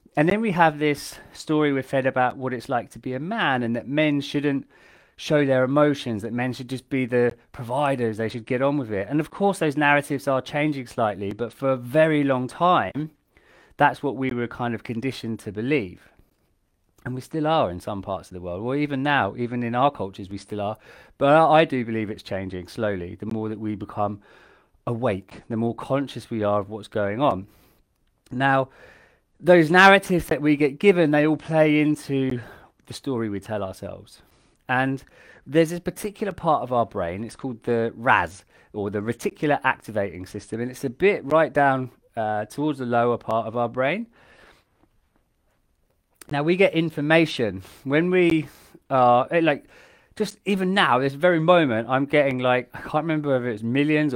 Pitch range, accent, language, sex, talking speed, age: 110-150 Hz, British, English, male, 190 wpm, 30-49